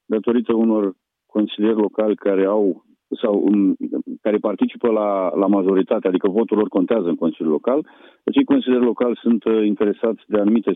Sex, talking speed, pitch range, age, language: male, 150 wpm, 95-125 Hz, 40-59, Romanian